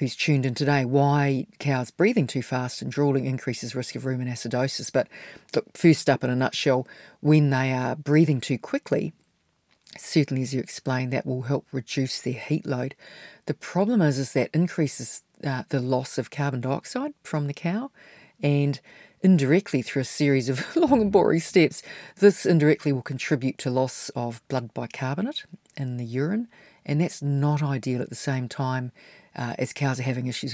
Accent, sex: Australian, female